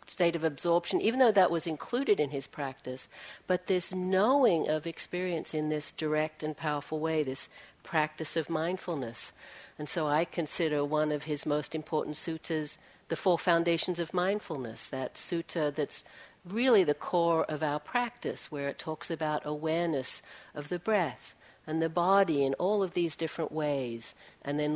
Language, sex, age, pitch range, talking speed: English, female, 60-79, 150-180 Hz, 165 wpm